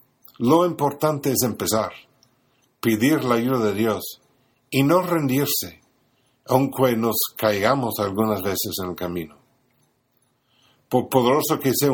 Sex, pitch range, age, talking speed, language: male, 115-140 Hz, 50-69, 120 wpm, Spanish